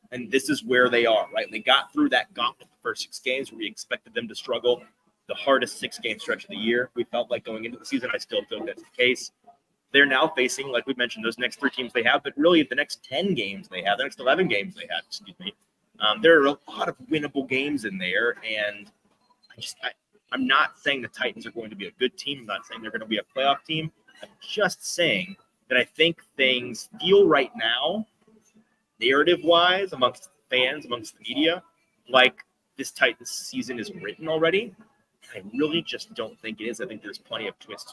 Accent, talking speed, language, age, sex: American, 220 wpm, English, 30-49, male